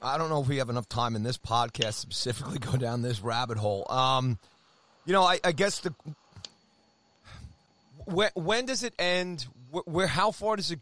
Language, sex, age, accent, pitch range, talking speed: English, male, 30-49, American, 120-180 Hz, 200 wpm